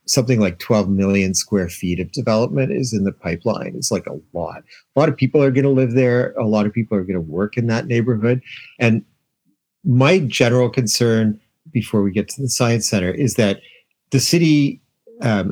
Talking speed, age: 200 wpm, 50-69